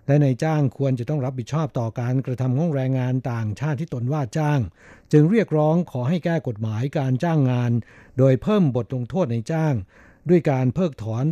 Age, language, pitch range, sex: 60-79, Thai, 120-150 Hz, male